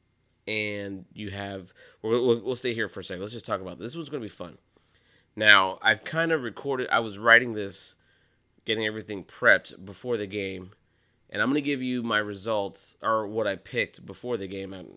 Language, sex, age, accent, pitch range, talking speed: English, male, 30-49, American, 100-120 Hz, 205 wpm